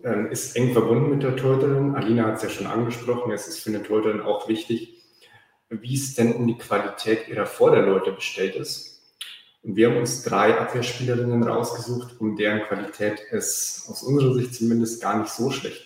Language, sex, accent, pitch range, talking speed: German, male, German, 110-135 Hz, 180 wpm